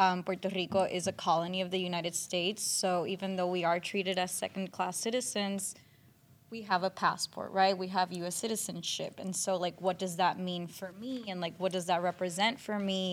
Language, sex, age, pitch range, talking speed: English, female, 20-39, 180-210 Hz, 210 wpm